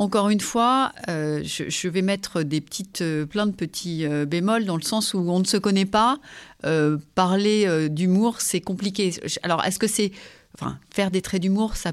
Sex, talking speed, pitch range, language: female, 200 wpm, 165-215 Hz, French